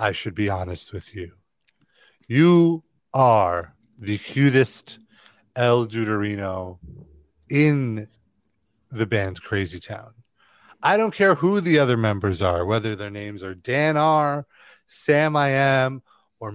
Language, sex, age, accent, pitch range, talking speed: English, male, 30-49, American, 110-180 Hz, 125 wpm